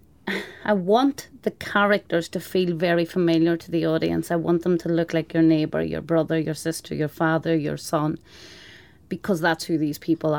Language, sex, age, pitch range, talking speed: English, female, 30-49, 170-190 Hz, 185 wpm